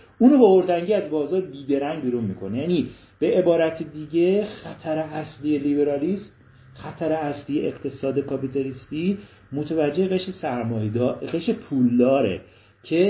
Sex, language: male, Persian